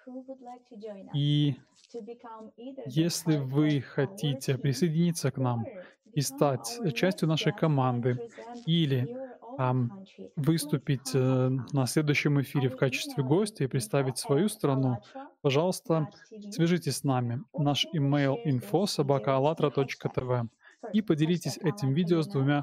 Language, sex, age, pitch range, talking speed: Russian, male, 20-39, 135-170 Hz, 105 wpm